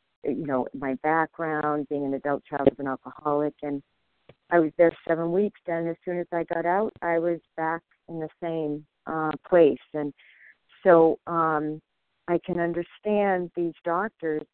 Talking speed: 165 wpm